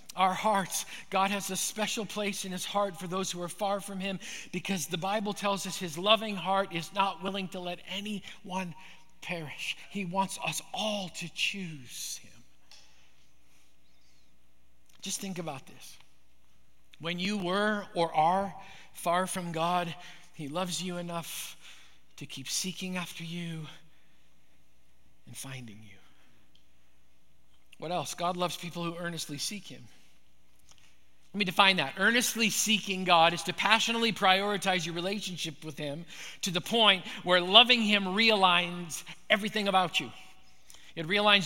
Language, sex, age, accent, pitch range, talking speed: English, male, 50-69, American, 160-210 Hz, 145 wpm